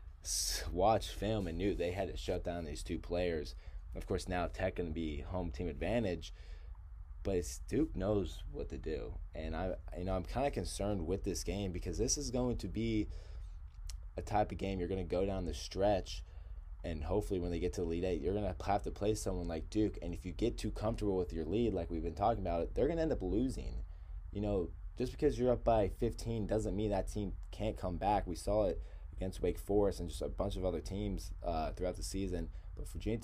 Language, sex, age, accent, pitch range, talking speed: English, male, 20-39, American, 80-95 Hz, 230 wpm